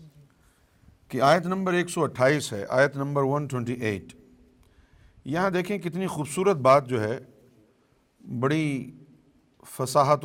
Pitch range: 130-165 Hz